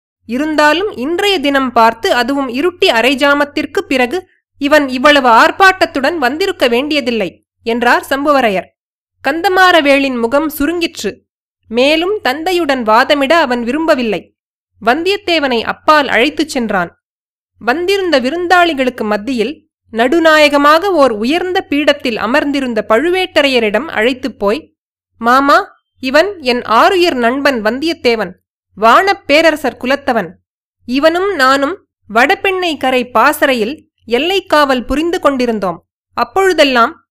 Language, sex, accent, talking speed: Tamil, female, native, 90 wpm